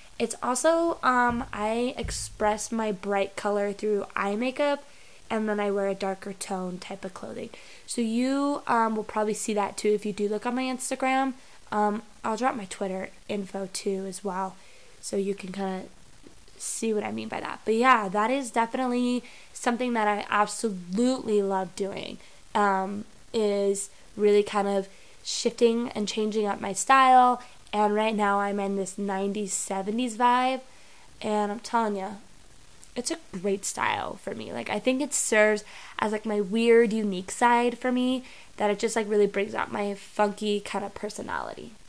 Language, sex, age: English, female, 10-29